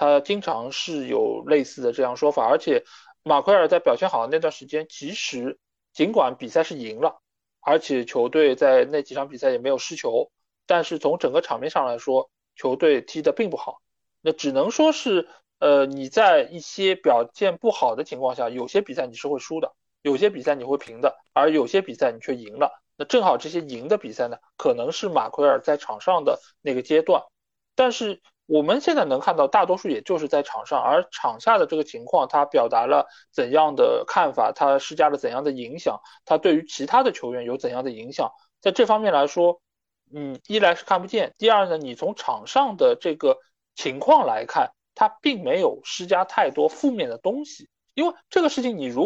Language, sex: Chinese, male